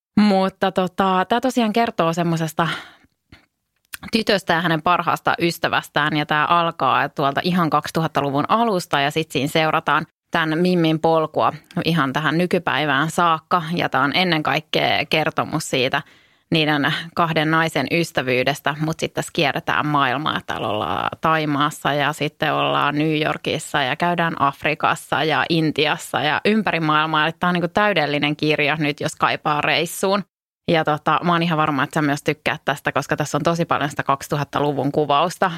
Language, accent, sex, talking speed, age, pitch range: English, Finnish, female, 145 wpm, 20-39, 150-175 Hz